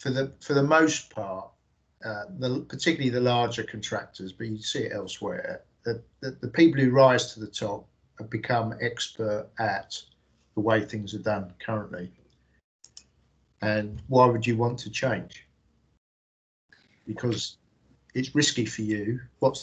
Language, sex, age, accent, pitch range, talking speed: English, male, 50-69, British, 105-125 Hz, 150 wpm